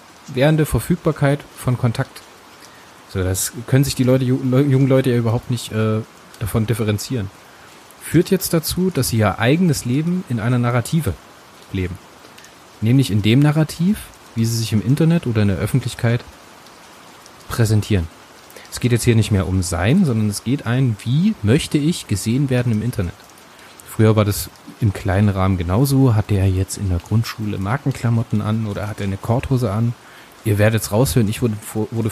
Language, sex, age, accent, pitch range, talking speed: German, male, 30-49, German, 105-135 Hz, 170 wpm